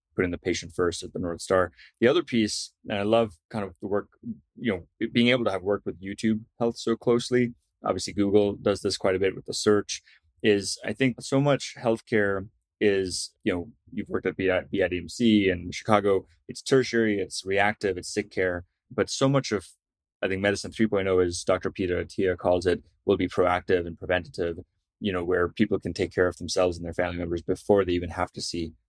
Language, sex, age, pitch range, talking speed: English, male, 20-39, 90-105 Hz, 210 wpm